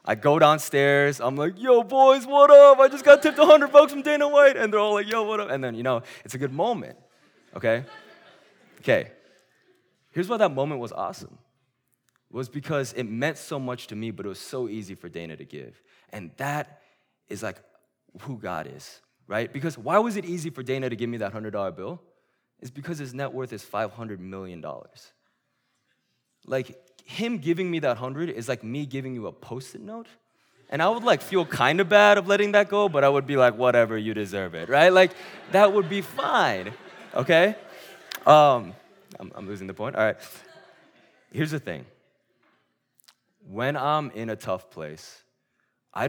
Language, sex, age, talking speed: English, male, 20-39, 195 wpm